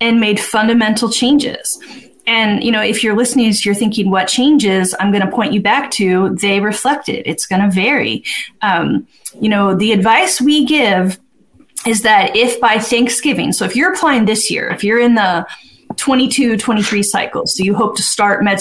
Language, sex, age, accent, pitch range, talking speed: English, female, 30-49, American, 200-245 Hz, 185 wpm